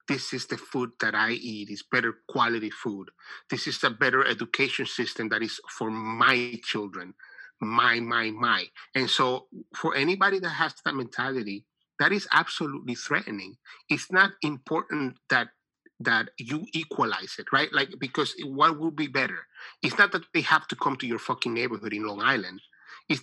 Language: English